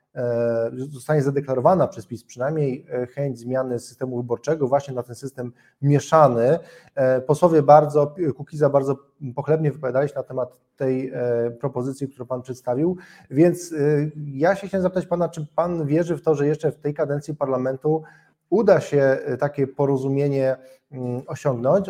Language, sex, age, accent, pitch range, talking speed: Polish, male, 20-39, native, 130-155 Hz, 140 wpm